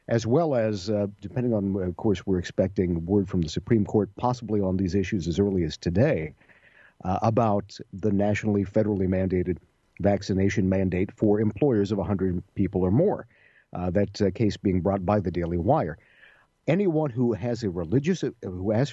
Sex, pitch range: male, 95-125 Hz